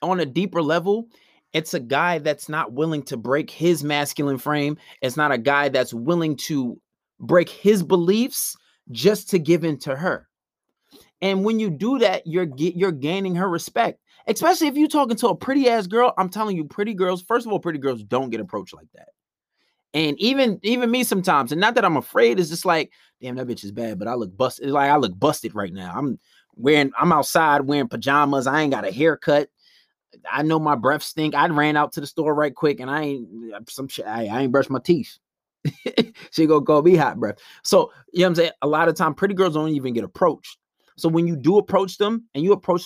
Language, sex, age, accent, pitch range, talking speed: English, male, 30-49, American, 145-200 Hz, 225 wpm